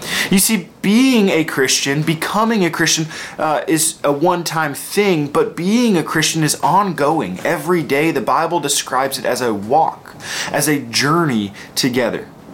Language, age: English, 20-39